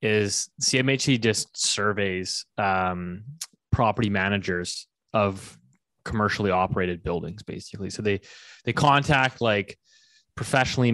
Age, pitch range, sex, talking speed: 20-39, 100-120 Hz, male, 100 wpm